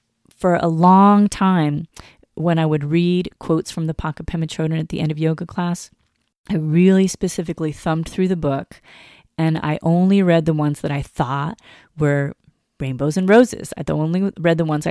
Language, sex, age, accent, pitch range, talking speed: English, female, 30-49, American, 155-185 Hz, 180 wpm